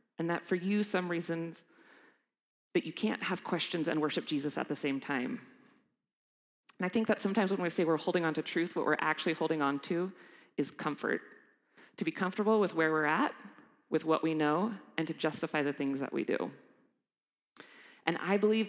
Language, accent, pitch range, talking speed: English, American, 165-225 Hz, 195 wpm